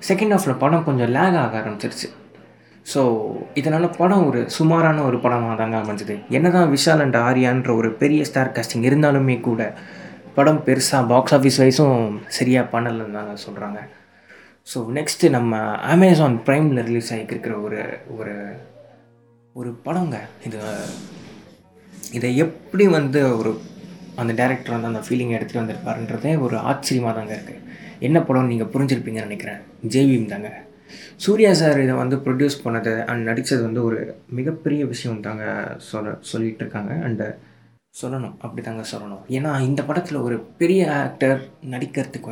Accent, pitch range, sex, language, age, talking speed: native, 115-140 Hz, male, Tamil, 20-39, 135 wpm